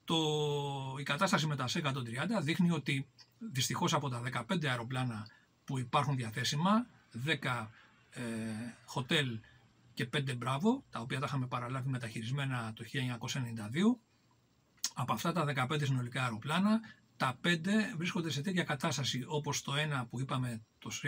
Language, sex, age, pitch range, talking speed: Greek, male, 40-59, 125-165 Hz, 135 wpm